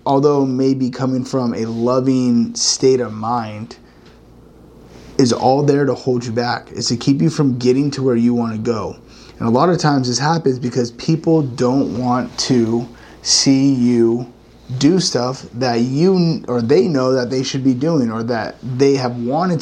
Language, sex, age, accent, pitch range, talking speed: English, male, 30-49, American, 120-130 Hz, 175 wpm